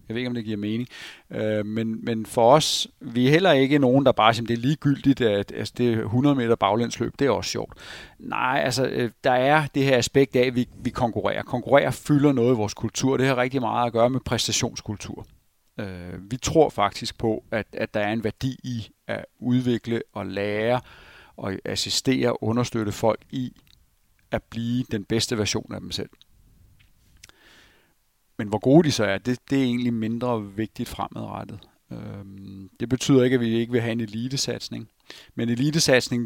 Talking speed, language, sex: 180 wpm, Danish, male